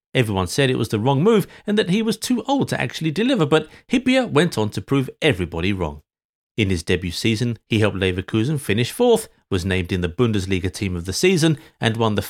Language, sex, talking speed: English, male, 220 wpm